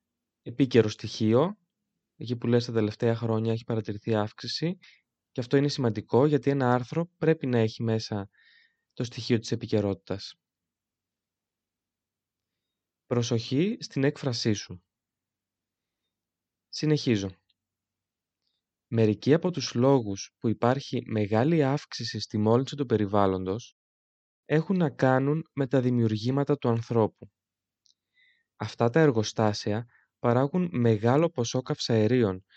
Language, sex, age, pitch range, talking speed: Greek, male, 20-39, 105-140 Hz, 105 wpm